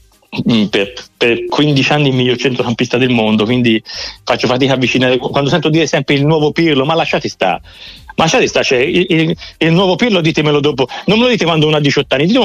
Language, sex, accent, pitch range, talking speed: Italian, male, native, 145-185 Hz, 210 wpm